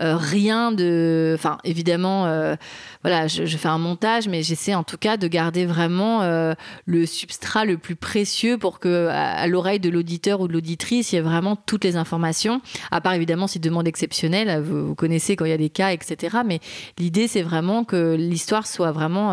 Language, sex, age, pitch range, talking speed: French, female, 30-49, 165-195 Hz, 205 wpm